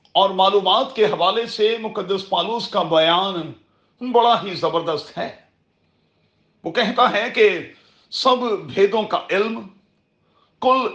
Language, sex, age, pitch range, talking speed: Urdu, male, 40-59, 185-245 Hz, 120 wpm